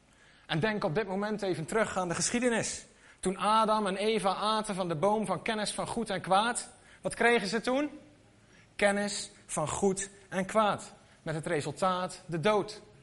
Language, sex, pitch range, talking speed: Dutch, male, 170-215 Hz, 175 wpm